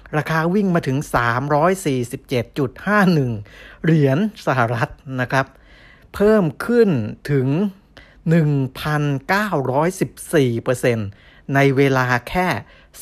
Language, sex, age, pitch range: Thai, male, 60-79, 120-155 Hz